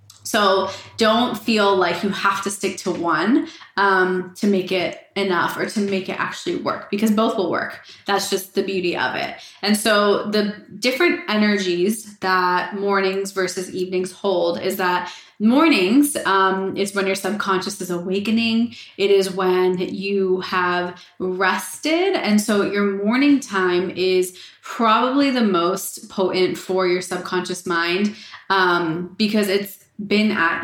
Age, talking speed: 20-39, 150 wpm